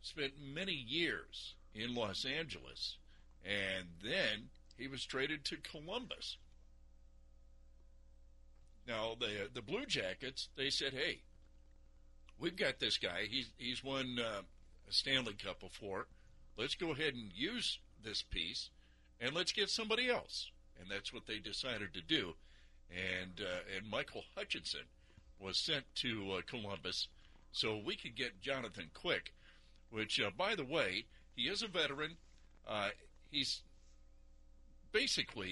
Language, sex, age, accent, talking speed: English, male, 60-79, American, 135 wpm